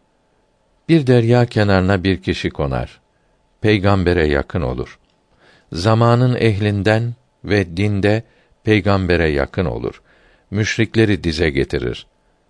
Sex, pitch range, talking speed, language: male, 85-115 Hz, 90 wpm, Turkish